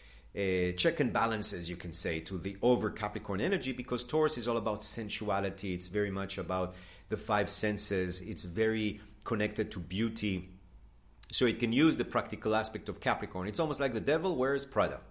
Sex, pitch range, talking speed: male, 95-125 Hz, 180 wpm